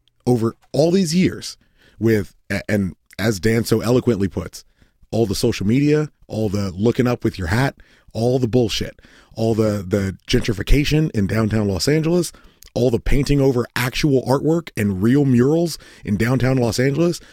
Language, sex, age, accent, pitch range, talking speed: English, male, 30-49, American, 105-160 Hz, 160 wpm